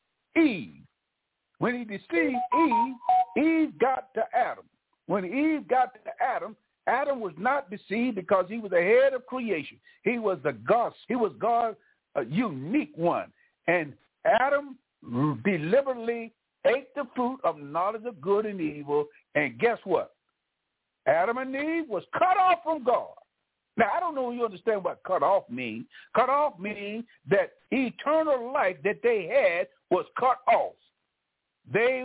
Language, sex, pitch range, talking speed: English, male, 205-295 Hz, 155 wpm